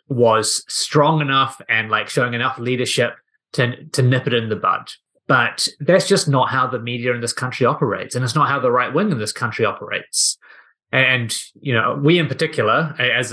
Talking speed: 200 wpm